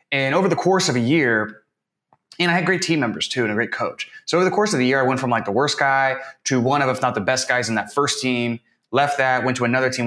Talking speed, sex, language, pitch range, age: 300 wpm, male, English, 105-130 Hz, 20-39